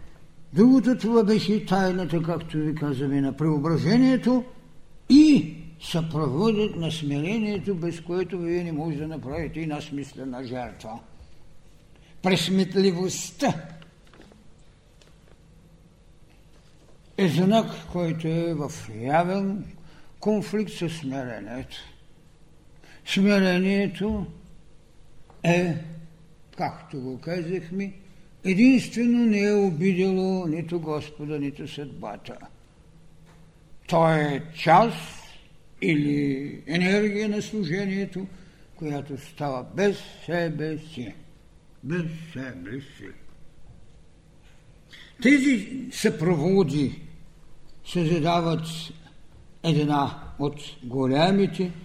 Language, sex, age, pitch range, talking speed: Bulgarian, male, 60-79, 150-190 Hz, 85 wpm